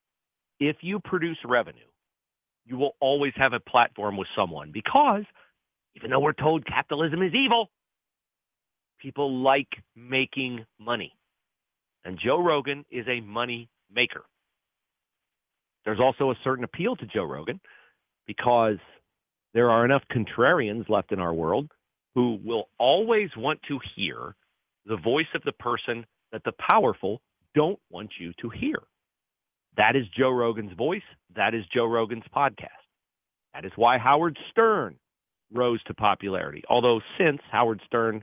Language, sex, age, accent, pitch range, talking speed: English, male, 40-59, American, 110-140 Hz, 140 wpm